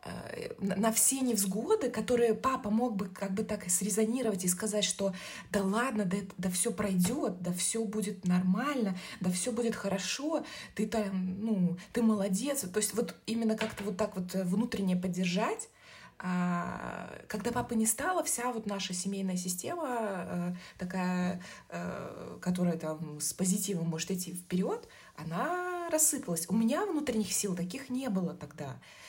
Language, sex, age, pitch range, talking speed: Russian, female, 20-39, 180-220 Hz, 145 wpm